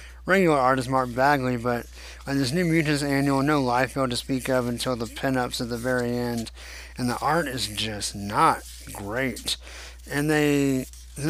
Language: English